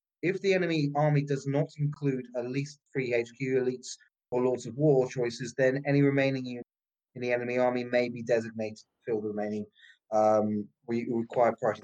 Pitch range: 125-150 Hz